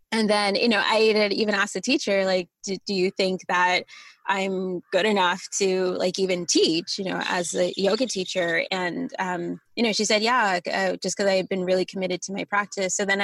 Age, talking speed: 20-39, 220 wpm